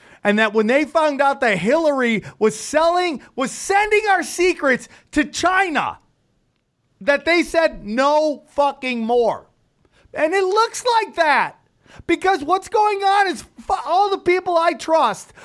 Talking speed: 145 wpm